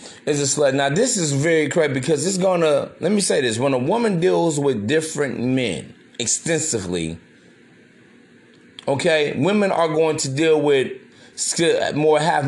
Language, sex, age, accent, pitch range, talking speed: English, male, 30-49, American, 150-185 Hz, 155 wpm